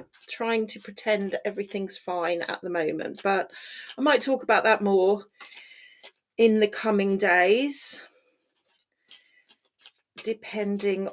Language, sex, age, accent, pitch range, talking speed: English, female, 40-59, British, 185-235 Hz, 110 wpm